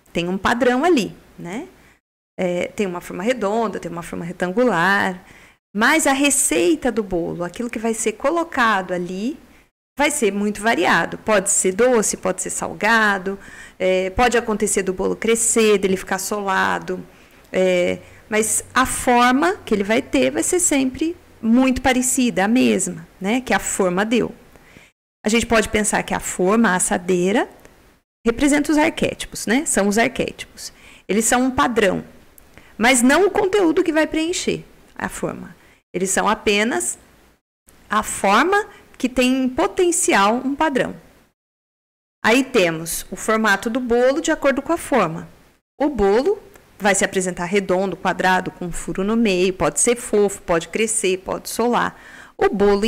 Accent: Brazilian